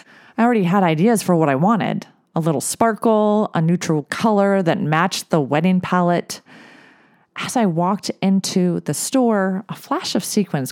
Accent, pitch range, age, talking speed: American, 165-215 Hz, 30-49, 160 wpm